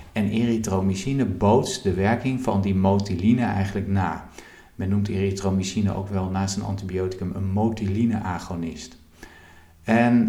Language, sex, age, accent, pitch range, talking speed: Dutch, male, 50-69, Dutch, 95-110 Hz, 120 wpm